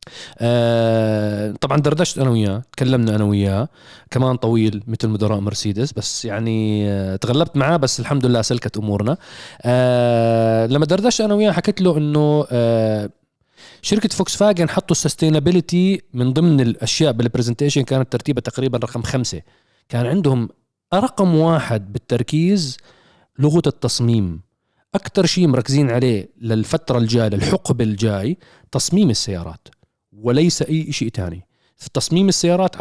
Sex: male